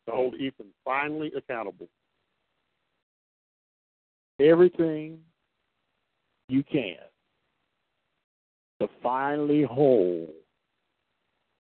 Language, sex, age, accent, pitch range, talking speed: English, male, 50-69, American, 115-150 Hz, 55 wpm